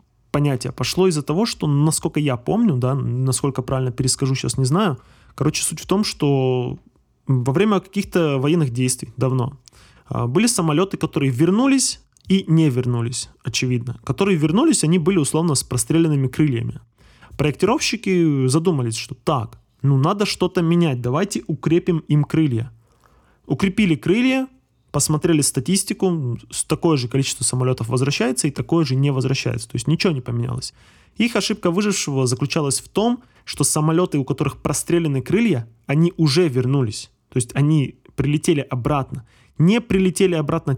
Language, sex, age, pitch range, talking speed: Russian, male, 20-39, 125-165 Hz, 140 wpm